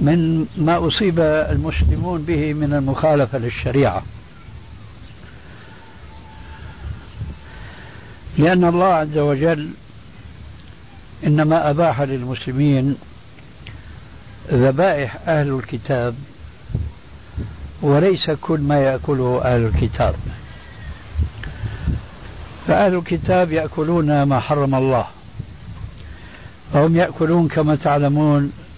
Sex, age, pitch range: male, 60-79, 105-155 Hz